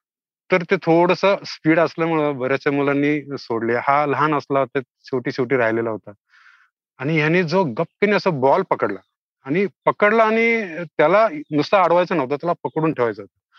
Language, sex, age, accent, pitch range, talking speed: Marathi, male, 30-49, native, 140-185 Hz, 145 wpm